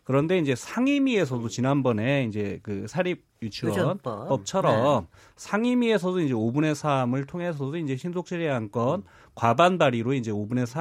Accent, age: native, 30-49